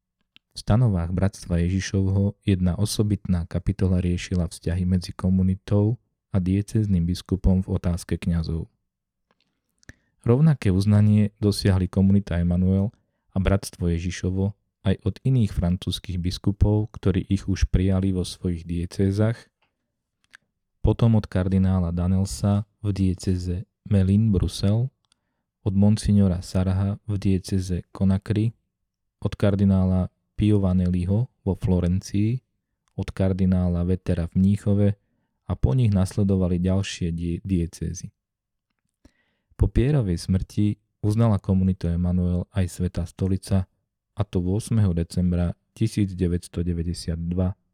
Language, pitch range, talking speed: Slovak, 90-100 Hz, 105 wpm